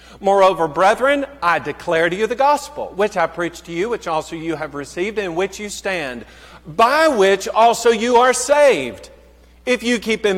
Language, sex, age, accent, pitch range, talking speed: English, male, 50-69, American, 185-250 Hz, 185 wpm